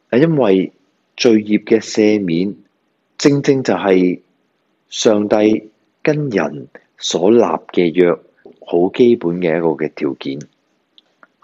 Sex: male